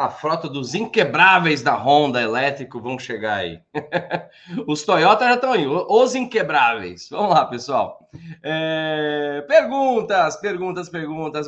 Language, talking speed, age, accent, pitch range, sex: Portuguese, 125 wpm, 20-39, Brazilian, 155-220 Hz, male